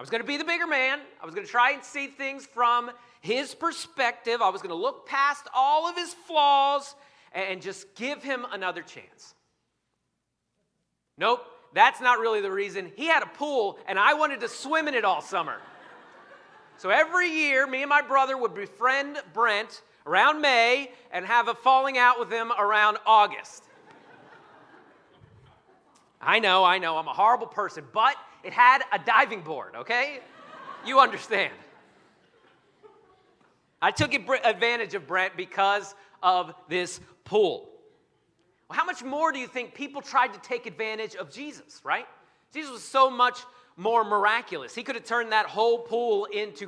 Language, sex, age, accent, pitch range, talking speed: English, male, 40-59, American, 210-290 Hz, 165 wpm